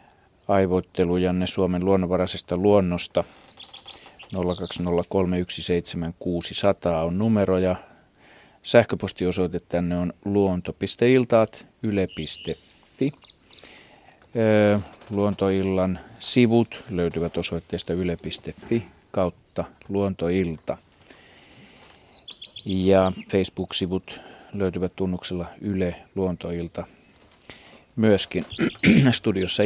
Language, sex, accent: Finnish, male, native